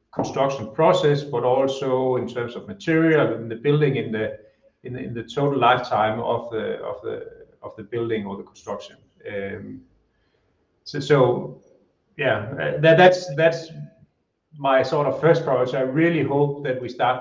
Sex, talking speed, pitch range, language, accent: male, 165 wpm, 110-140 Hz, English, Danish